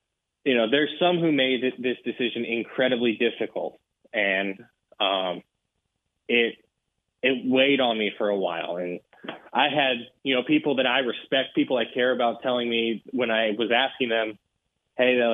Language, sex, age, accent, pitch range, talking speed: English, male, 20-39, American, 115-130 Hz, 165 wpm